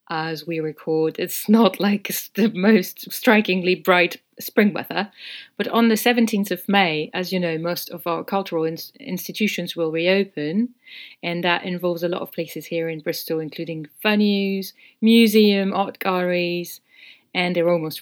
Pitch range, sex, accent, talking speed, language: 165-195 Hz, female, British, 155 wpm, English